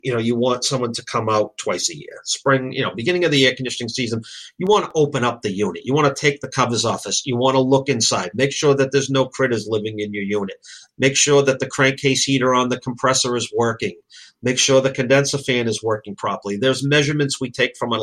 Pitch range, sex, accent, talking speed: 120-135 Hz, male, American, 250 wpm